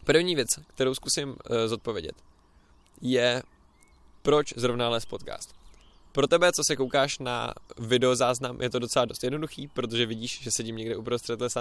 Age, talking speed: 20-39, 155 wpm